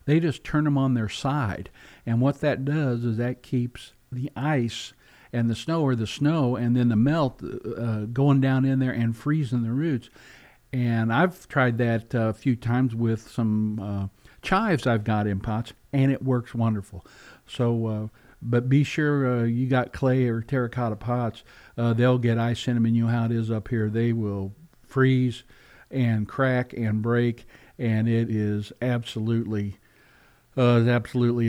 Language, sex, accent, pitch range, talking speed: English, male, American, 110-130 Hz, 180 wpm